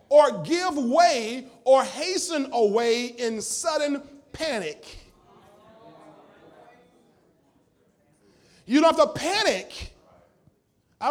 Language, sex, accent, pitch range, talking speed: English, male, American, 230-325 Hz, 80 wpm